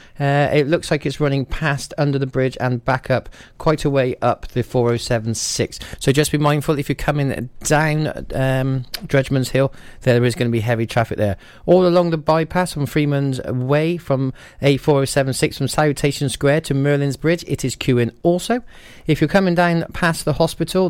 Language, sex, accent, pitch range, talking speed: English, male, British, 125-155 Hz, 185 wpm